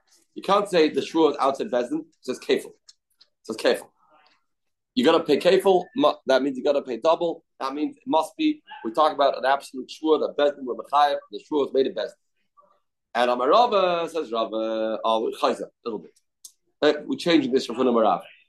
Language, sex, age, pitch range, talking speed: English, male, 40-59, 135-225 Hz, 195 wpm